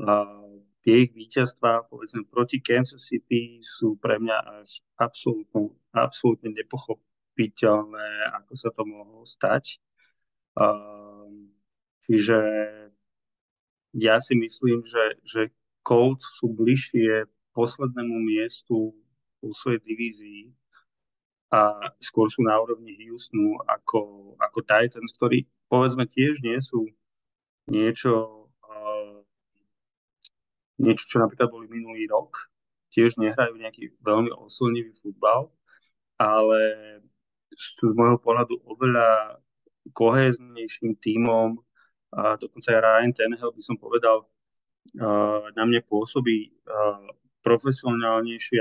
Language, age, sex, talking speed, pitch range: Slovak, 30-49, male, 95 wpm, 110-120 Hz